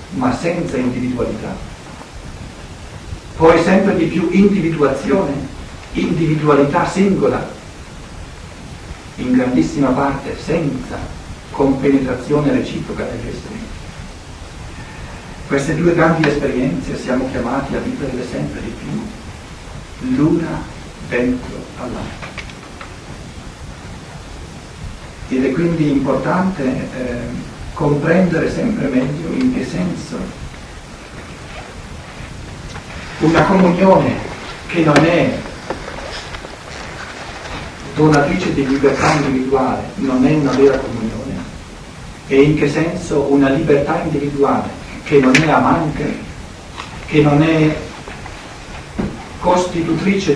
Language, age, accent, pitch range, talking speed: Italian, 60-79, native, 130-165 Hz, 85 wpm